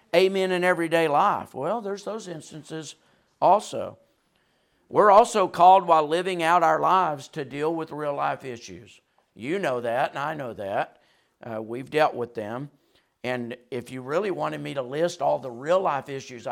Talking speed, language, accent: 175 wpm, English, American